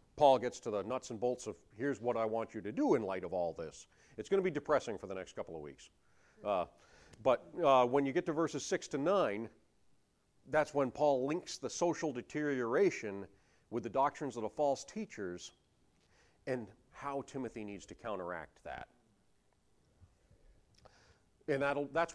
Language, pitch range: English, 105-150 Hz